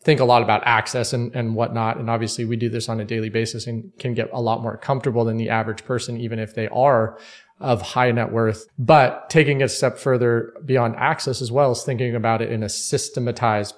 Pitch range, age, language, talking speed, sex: 115-130 Hz, 30-49, English, 225 wpm, male